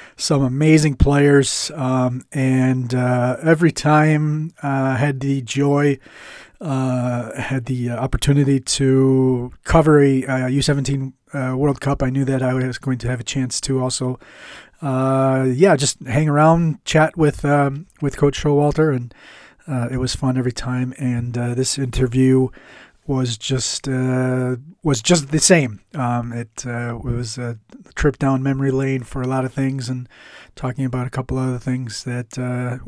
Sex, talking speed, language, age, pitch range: male, 165 wpm, English, 30-49, 125-145 Hz